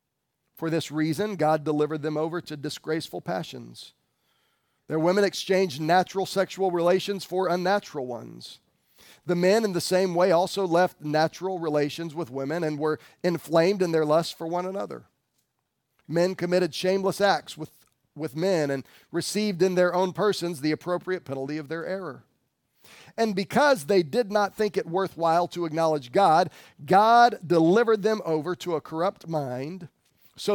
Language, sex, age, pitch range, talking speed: English, male, 40-59, 155-200 Hz, 155 wpm